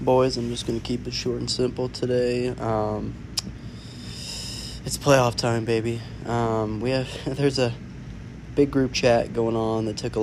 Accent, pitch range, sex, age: American, 105-115 Hz, male, 20-39